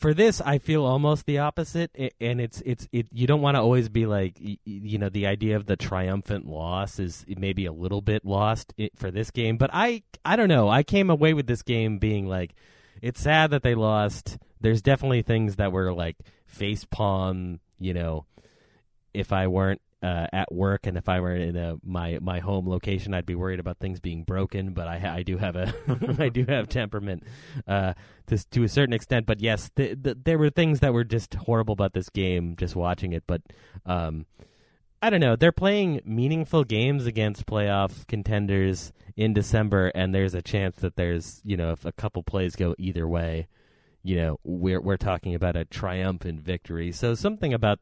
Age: 30-49